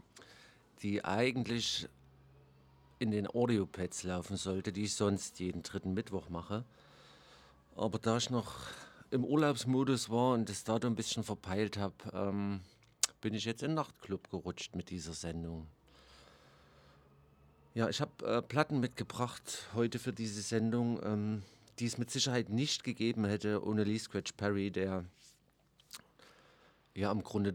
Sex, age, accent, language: male, 50-69, German, German